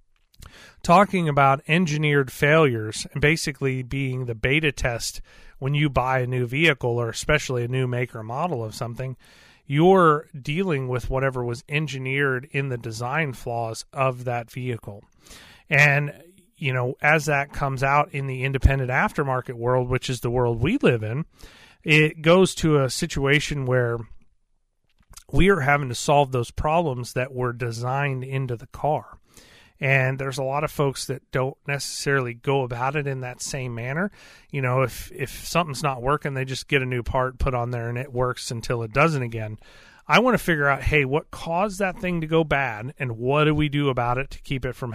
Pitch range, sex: 125-150 Hz, male